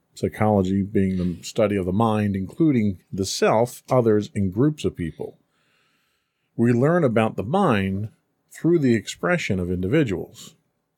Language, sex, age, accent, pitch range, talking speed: English, male, 40-59, American, 95-130 Hz, 135 wpm